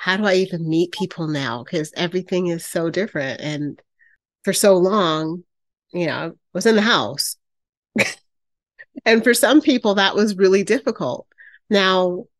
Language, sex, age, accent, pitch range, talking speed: English, female, 30-49, American, 175-225 Hz, 155 wpm